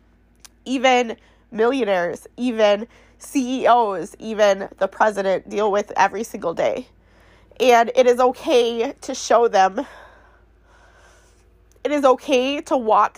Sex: female